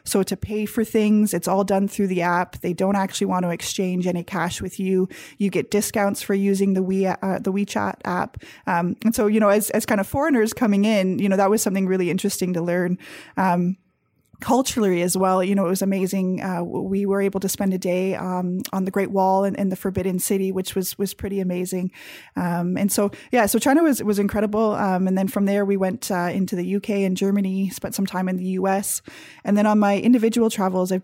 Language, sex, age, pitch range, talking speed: English, female, 20-39, 185-210 Hz, 235 wpm